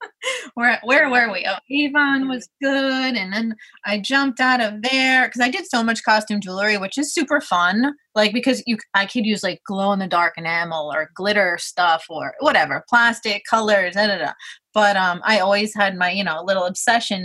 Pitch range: 185-235 Hz